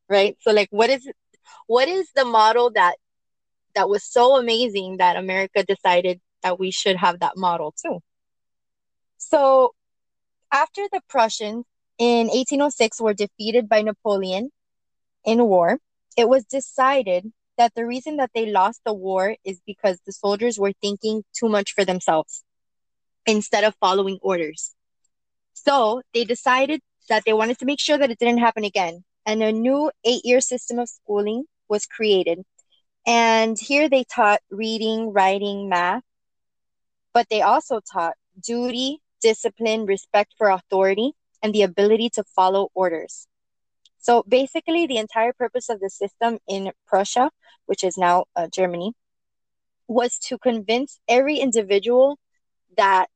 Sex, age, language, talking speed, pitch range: female, 20-39, English, 145 wpm, 195-245 Hz